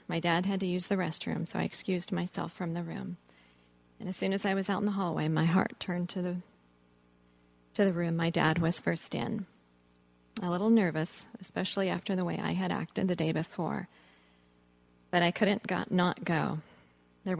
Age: 40-59